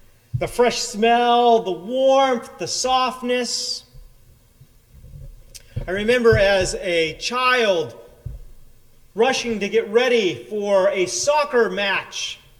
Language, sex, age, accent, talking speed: English, male, 40-59, American, 95 wpm